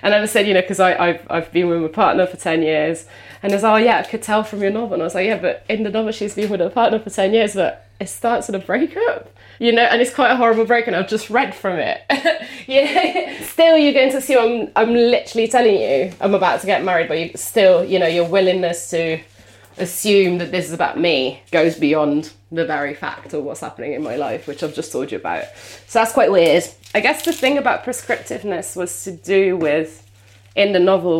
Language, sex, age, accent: English, female, 20-39, British